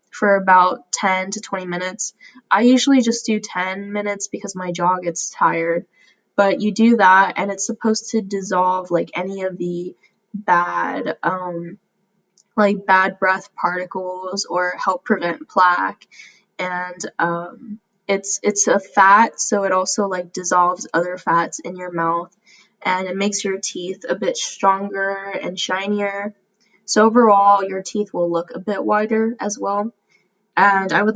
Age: 10-29